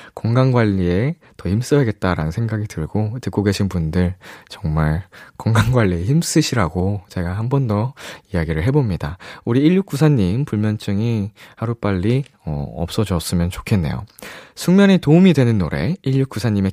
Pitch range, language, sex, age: 100-155 Hz, Korean, male, 20-39